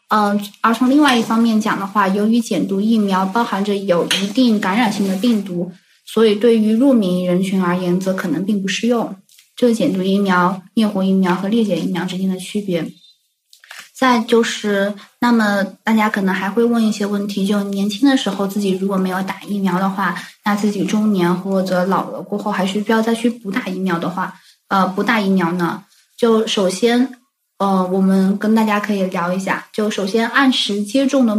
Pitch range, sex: 195-235 Hz, female